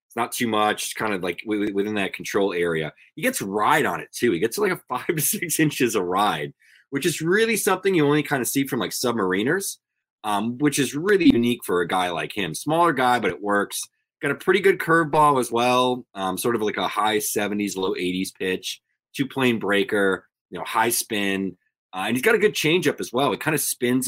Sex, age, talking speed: male, 20-39, 230 wpm